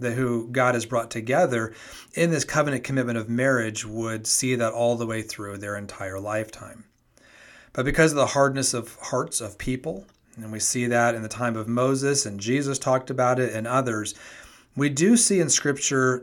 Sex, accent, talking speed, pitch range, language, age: male, American, 190 wpm, 110-140 Hz, English, 40-59